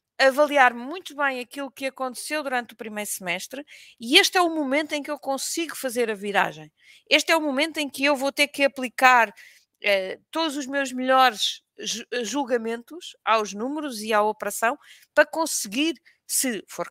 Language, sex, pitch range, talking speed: Portuguese, female, 225-285 Hz, 170 wpm